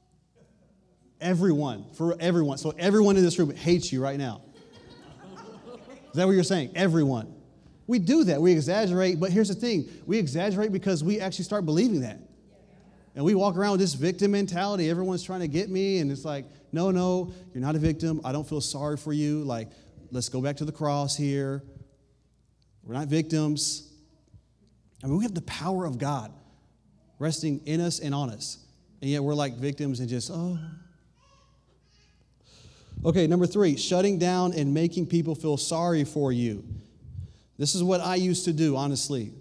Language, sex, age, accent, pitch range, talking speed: English, male, 30-49, American, 140-175 Hz, 175 wpm